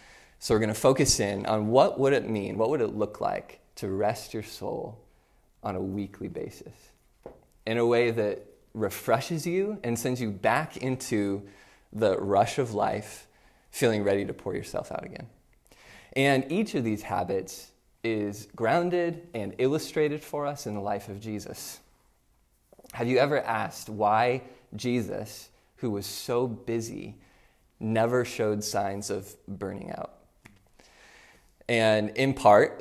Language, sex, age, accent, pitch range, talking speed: English, male, 20-39, American, 100-125 Hz, 150 wpm